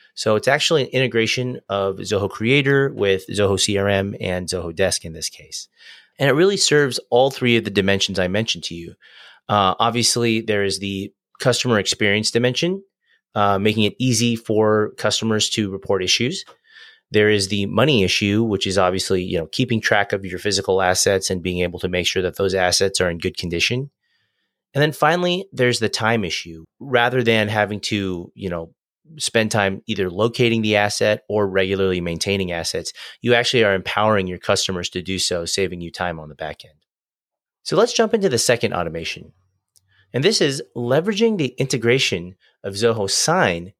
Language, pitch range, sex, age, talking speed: English, 95-120 Hz, male, 30-49, 180 wpm